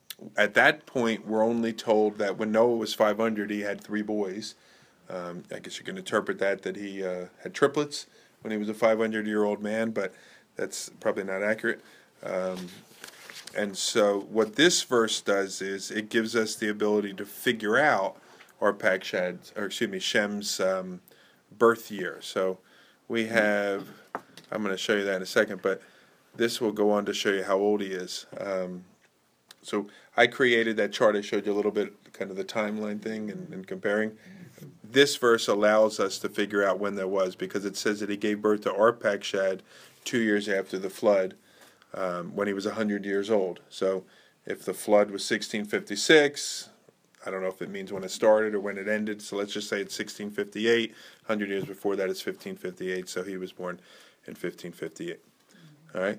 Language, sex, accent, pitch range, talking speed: English, male, American, 100-110 Hz, 190 wpm